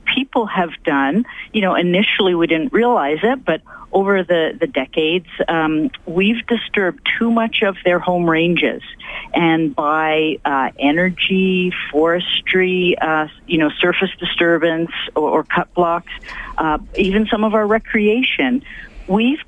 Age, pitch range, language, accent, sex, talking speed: 50-69, 160-205 Hz, English, American, female, 140 wpm